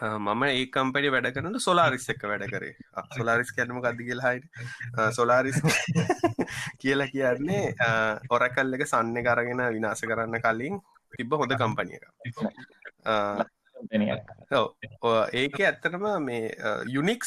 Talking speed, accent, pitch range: 75 wpm, Indian, 110-145 Hz